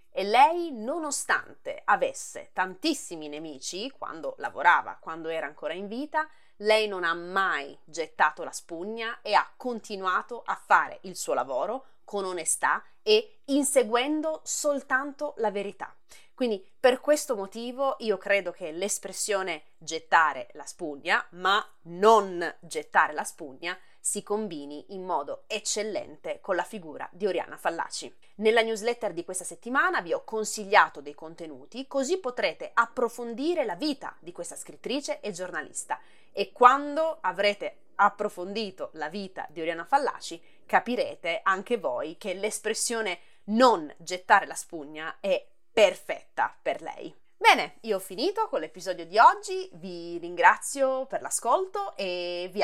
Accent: native